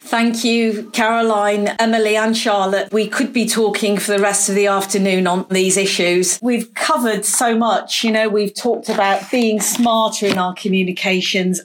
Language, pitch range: English, 195-230 Hz